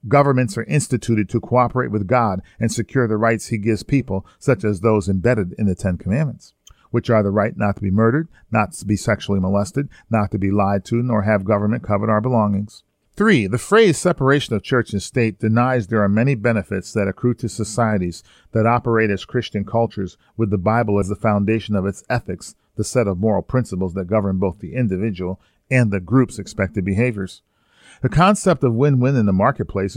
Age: 40-59